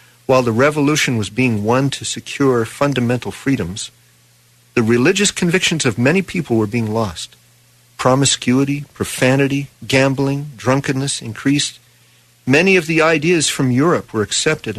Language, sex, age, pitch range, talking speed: English, male, 50-69, 105-135 Hz, 130 wpm